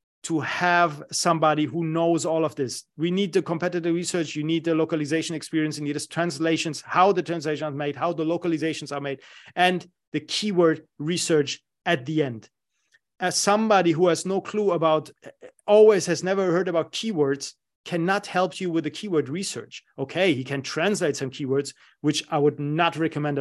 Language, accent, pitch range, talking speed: English, German, 150-190 Hz, 180 wpm